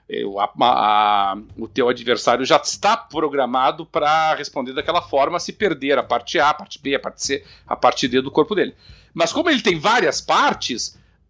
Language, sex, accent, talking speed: Portuguese, male, Brazilian, 180 wpm